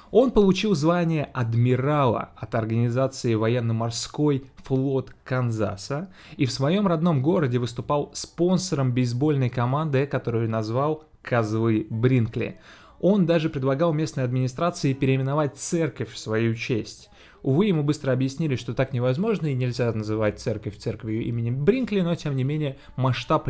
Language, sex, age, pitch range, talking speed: Russian, male, 20-39, 115-150 Hz, 130 wpm